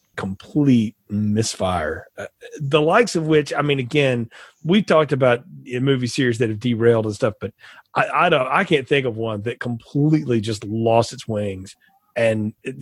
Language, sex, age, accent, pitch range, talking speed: English, male, 40-59, American, 115-155 Hz, 175 wpm